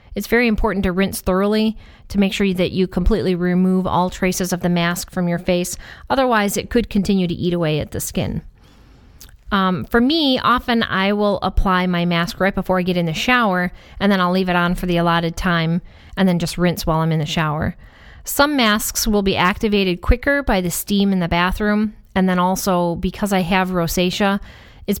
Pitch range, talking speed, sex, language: 175-205 Hz, 205 wpm, female, English